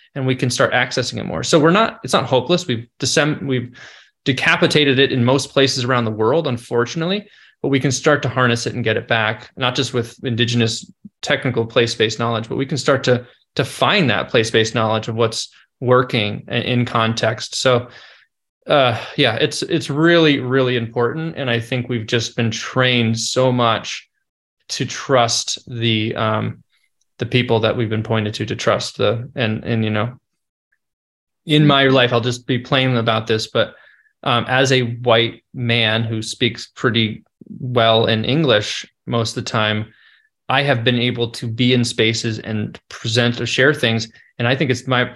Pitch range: 115-135 Hz